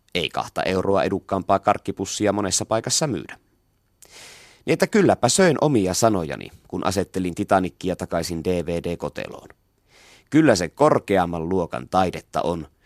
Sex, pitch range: male, 85-110 Hz